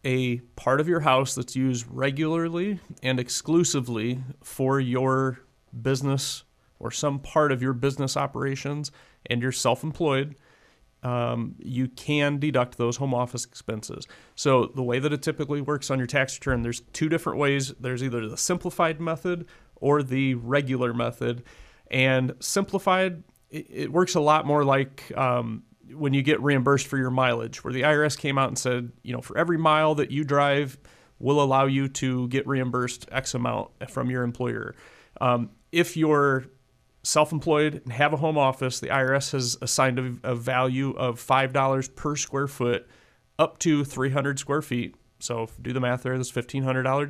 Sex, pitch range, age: male, 125-145 Hz, 30-49